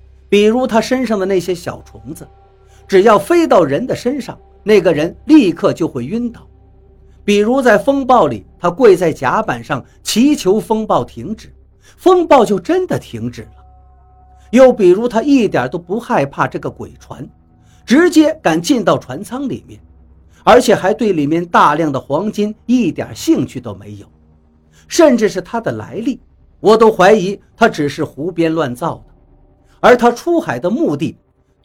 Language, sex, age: Chinese, male, 50-69